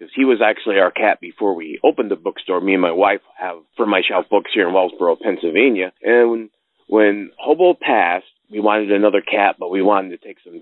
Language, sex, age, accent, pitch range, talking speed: English, male, 30-49, American, 95-110 Hz, 215 wpm